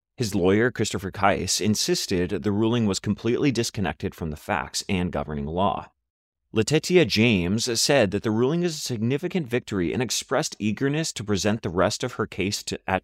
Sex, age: male, 30-49